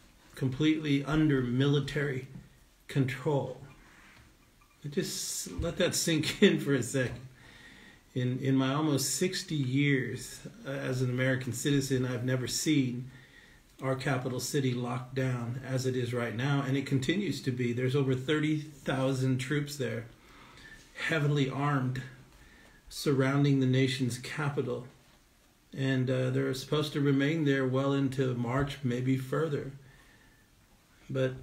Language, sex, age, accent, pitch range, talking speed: English, male, 50-69, American, 130-145 Hz, 120 wpm